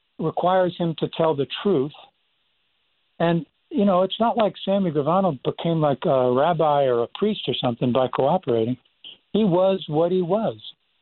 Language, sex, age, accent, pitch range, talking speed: English, male, 60-79, American, 140-180 Hz, 165 wpm